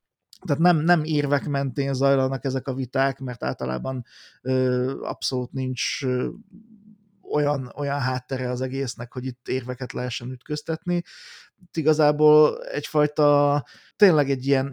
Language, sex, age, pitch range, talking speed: Hungarian, male, 30-49, 125-150 Hz, 125 wpm